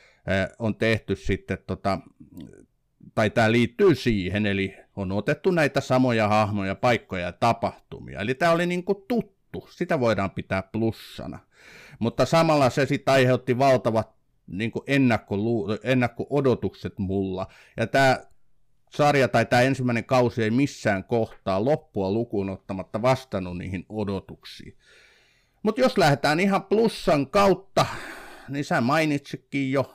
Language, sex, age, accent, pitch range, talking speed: Finnish, male, 50-69, native, 100-135 Hz, 125 wpm